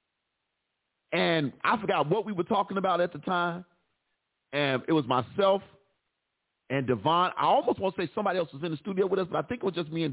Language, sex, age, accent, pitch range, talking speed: English, male, 40-59, American, 130-175 Hz, 225 wpm